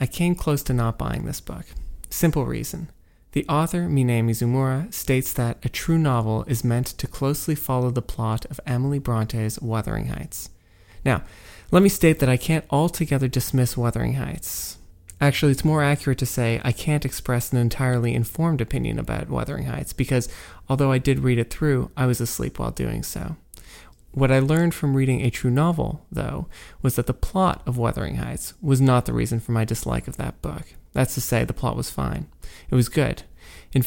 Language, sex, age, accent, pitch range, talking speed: English, male, 30-49, American, 115-145 Hz, 190 wpm